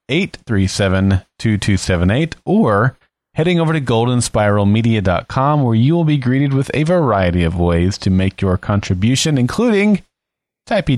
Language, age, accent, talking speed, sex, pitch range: English, 30-49, American, 120 wpm, male, 105-155 Hz